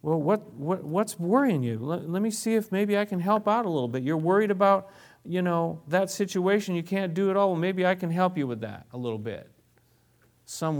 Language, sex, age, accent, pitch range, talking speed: English, male, 40-59, American, 120-185 Hz, 240 wpm